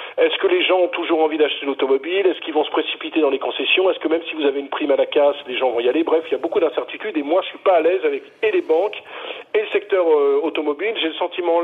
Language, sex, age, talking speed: French, male, 40-59, 305 wpm